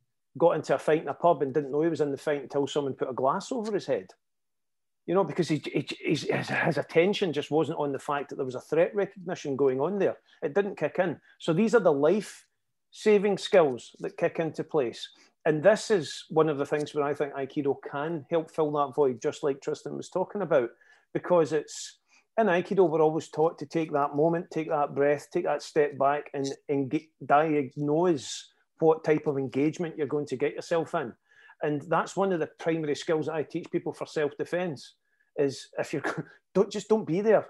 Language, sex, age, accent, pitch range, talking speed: English, male, 40-59, British, 145-180 Hz, 215 wpm